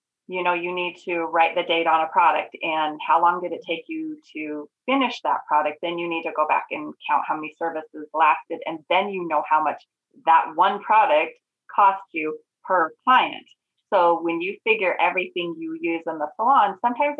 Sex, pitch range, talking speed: female, 160-225 Hz, 200 wpm